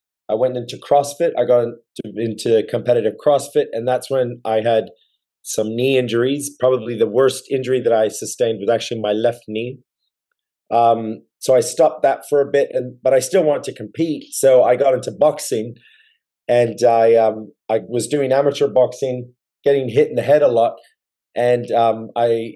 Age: 30-49